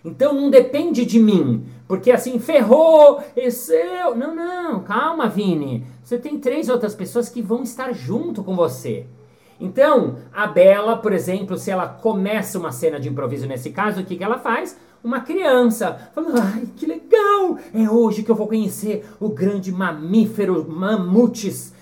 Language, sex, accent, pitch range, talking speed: Portuguese, male, Brazilian, 185-250 Hz, 160 wpm